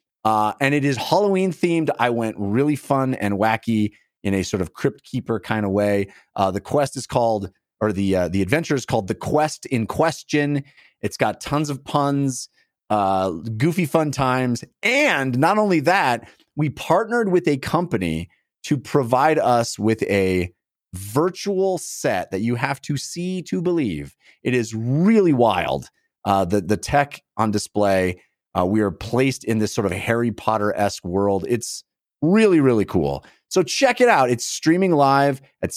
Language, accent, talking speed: English, American, 170 wpm